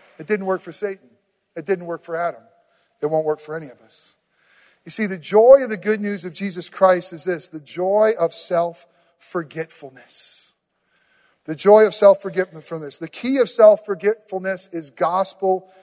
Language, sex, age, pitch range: English, male, 40-59, 170-245 Hz